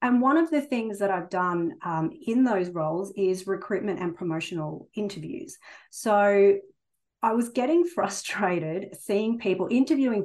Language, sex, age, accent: English, female, 30-49, Australian